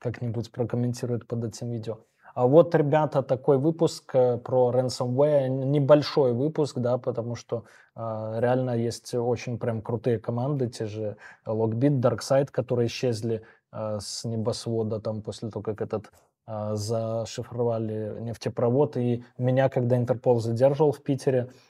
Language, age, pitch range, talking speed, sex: Russian, 20-39, 110-125 Hz, 135 wpm, male